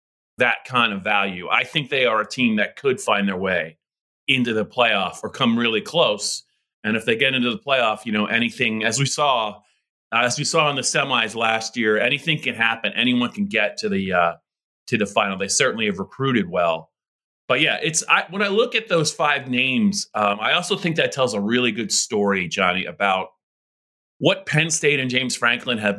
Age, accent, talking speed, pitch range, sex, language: 30-49, American, 210 wpm, 110-150 Hz, male, English